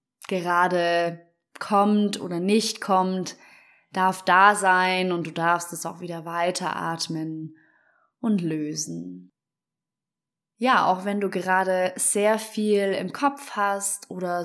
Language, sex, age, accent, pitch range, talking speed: German, female, 20-39, German, 170-210 Hz, 115 wpm